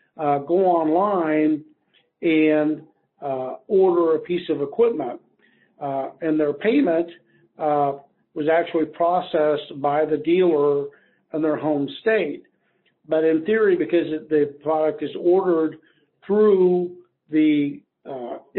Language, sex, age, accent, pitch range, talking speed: English, male, 60-79, American, 145-175 Hz, 120 wpm